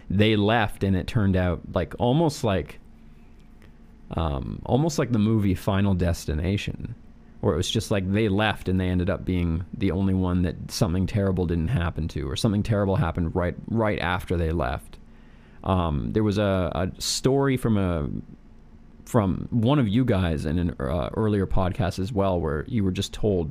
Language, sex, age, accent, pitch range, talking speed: English, male, 30-49, American, 85-110 Hz, 180 wpm